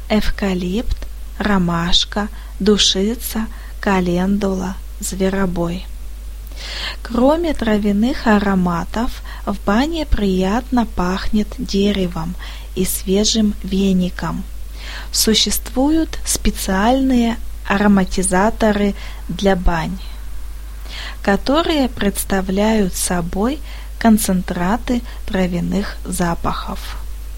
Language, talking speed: Russian, 60 wpm